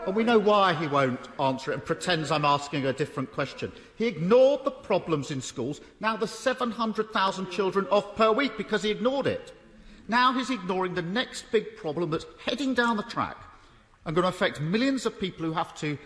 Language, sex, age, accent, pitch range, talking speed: English, male, 50-69, British, 165-230 Hz, 200 wpm